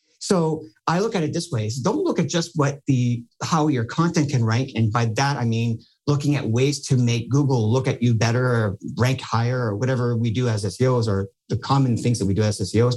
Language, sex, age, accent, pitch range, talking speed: English, male, 50-69, American, 115-145 Hz, 240 wpm